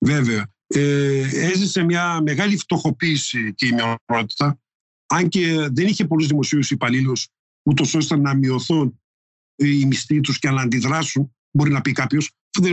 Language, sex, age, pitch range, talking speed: Greek, male, 50-69, 140-185 Hz, 150 wpm